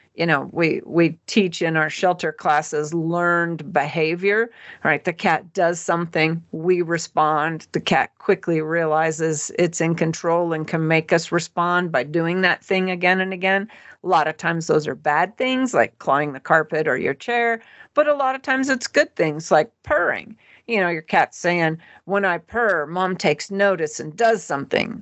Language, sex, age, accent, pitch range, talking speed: English, female, 50-69, American, 160-200 Hz, 180 wpm